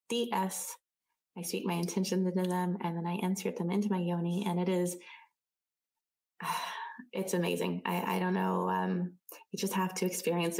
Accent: American